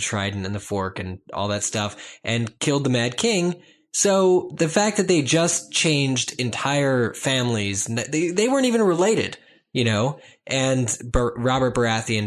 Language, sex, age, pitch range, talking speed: English, male, 10-29, 105-130 Hz, 155 wpm